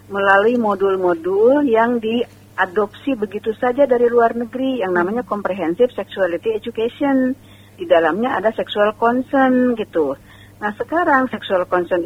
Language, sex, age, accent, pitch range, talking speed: Indonesian, female, 50-69, native, 185-250 Hz, 120 wpm